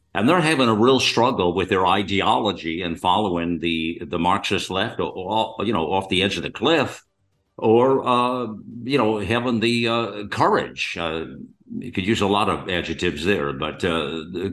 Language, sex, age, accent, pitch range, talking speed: English, male, 60-79, American, 90-120 Hz, 185 wpm